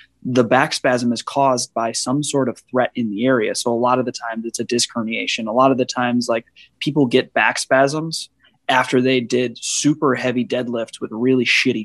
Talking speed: 215 wpm